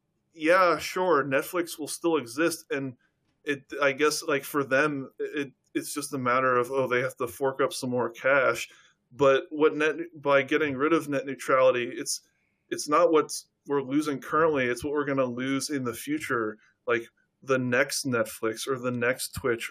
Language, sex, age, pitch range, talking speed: English, male, 20-39, 125-145 Hz, 185 wpm